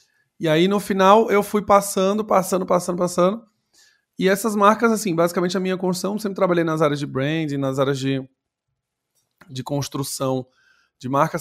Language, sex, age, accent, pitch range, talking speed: Portuguese, male, 20-39, Brazilian, 130-170 Hz, 165 wpm